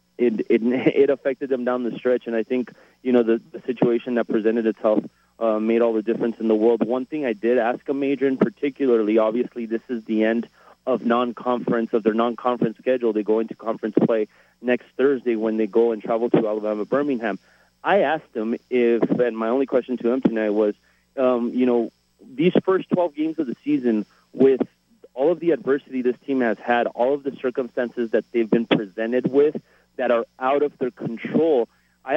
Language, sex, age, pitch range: English, male, 30-49, 115-135 Hz